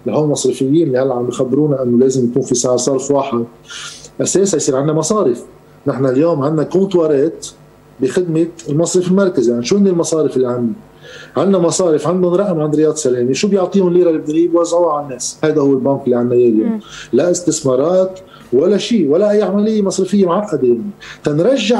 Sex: male